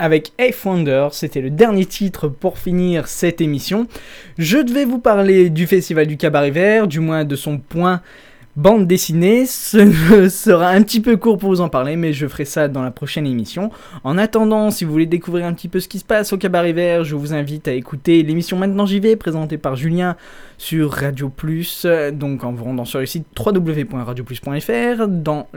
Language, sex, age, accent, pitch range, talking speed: French, male, 20-39, French, 140-195 Hz, 195 wpm